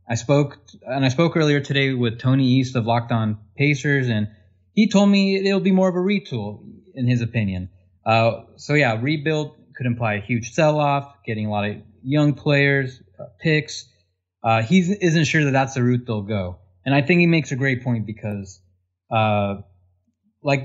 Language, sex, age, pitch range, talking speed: English, male, 20-39, 105-140 Hz, 190 wpm